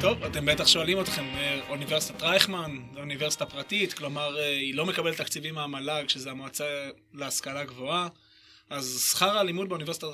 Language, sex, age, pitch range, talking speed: Hebrew, male, 20-39, 140-175 Hz, 135 wpm